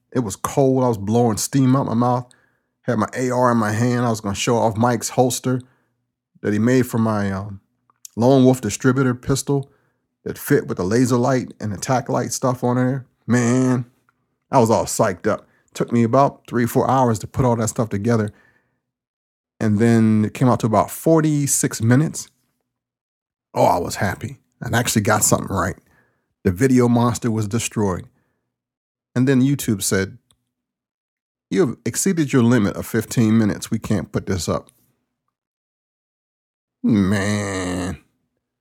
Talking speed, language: 160 wpm, English